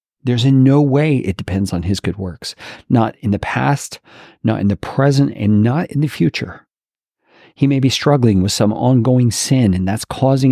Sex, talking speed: male, 195 wpm